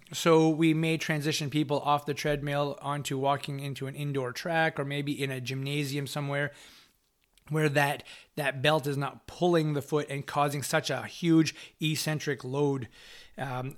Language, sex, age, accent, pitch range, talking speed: English, male, 30-49, American, 145-175 Hz, 160 wpm